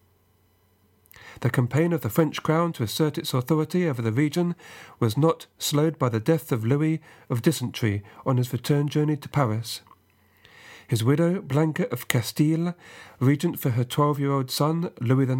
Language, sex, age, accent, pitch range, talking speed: English, male, 40-59, British, 115-155 Hz, 155 wpm